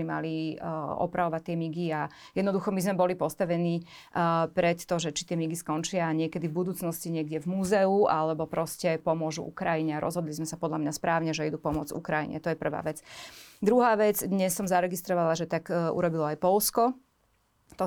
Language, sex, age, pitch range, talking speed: Slovak, female, 30-49, 165-190 Hz, 185 wpm